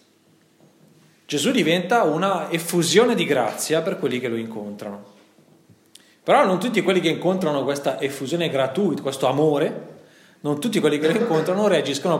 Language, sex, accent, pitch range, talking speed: Italian, male, native, 120-165 Hz, 145 wpm